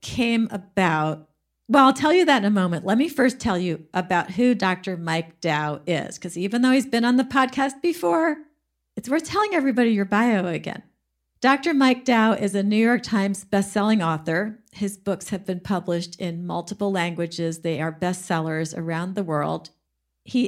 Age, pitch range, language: 50-69, 180-225 Hz, English